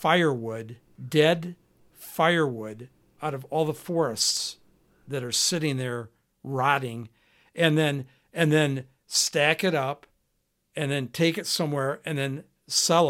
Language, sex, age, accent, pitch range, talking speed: English, male, 60-79, American, 135-165 Hz, 130 wpm